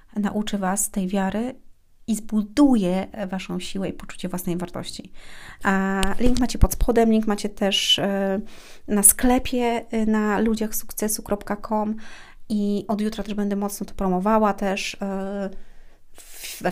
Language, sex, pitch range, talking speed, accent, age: Polish, female, 185-220 Hz, 125 wpm, native, 30-49